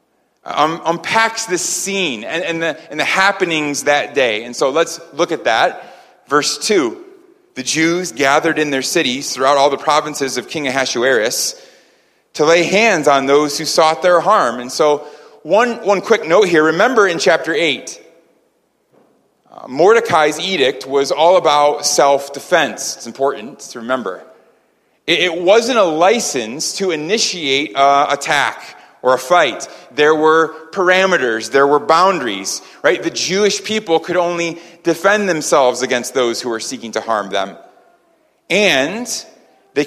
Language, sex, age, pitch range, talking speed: English, male, 30-49, 145-190 Hz, 150 wpm